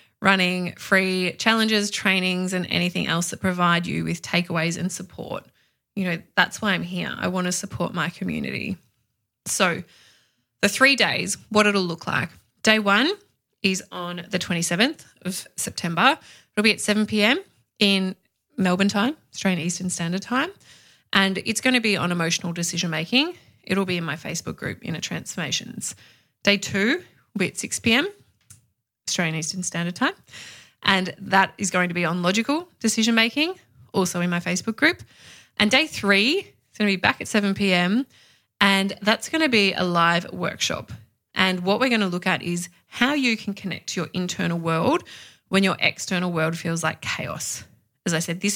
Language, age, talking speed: English, 20-39, 175 wpm